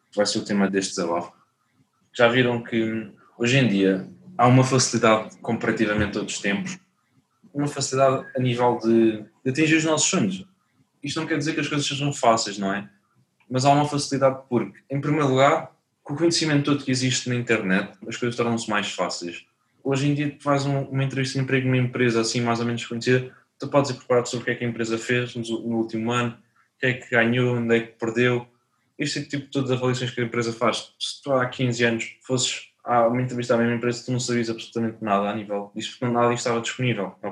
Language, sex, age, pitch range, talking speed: Portuguese, male, 20-39, 115-130 Hz, 220 wpm